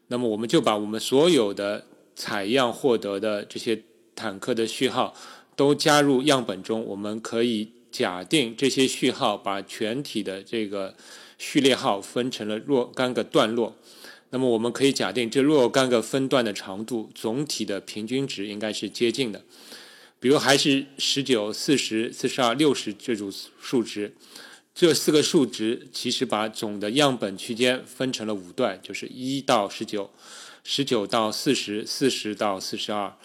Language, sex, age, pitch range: Chinese, male, 20-39, 105-130 Hz